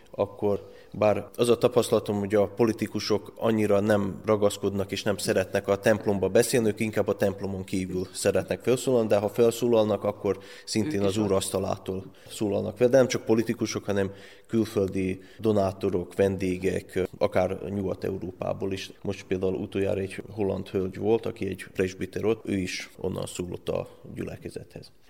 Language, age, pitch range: Hungarian, 20-39, 100-110 Hz